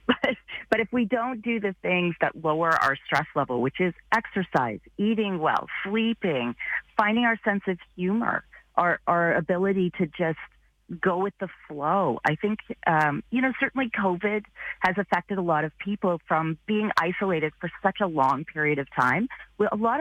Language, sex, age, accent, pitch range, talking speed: English, female, 40-59, American, 155-205 Hz, 175 wpm